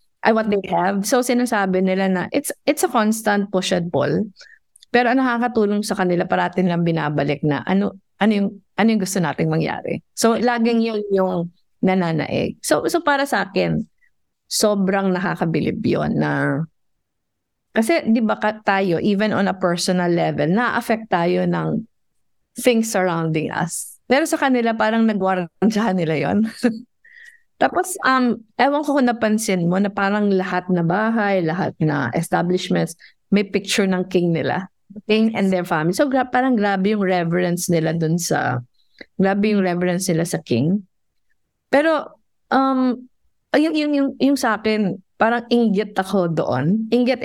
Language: English